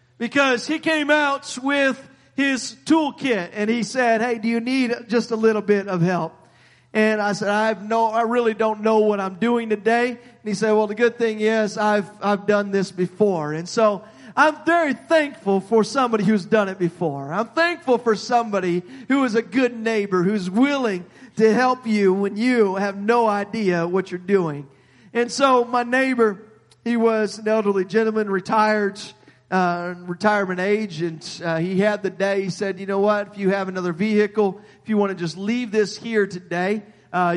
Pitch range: 185-225 Hz